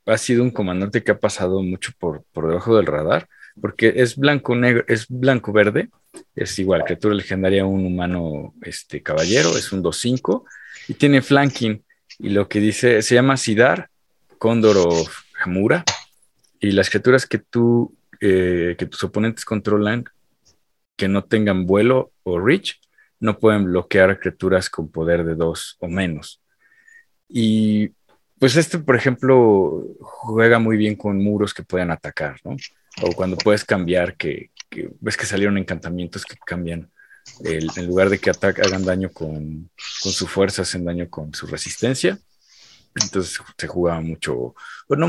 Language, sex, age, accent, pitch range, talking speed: Spanish, male, 40-59, Mexican, 90-110 Hz, 155 wpm